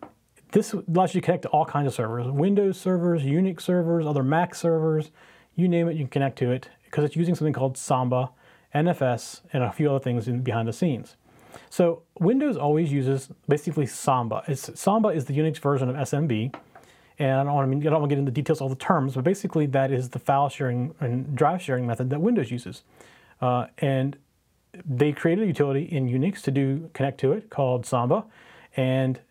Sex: male